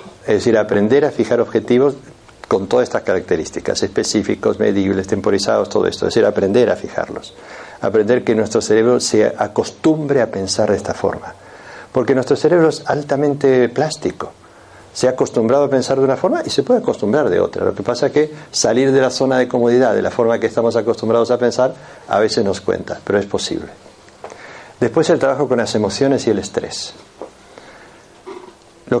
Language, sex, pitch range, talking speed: Spanish, male, 110-135 Hz, 180 wpm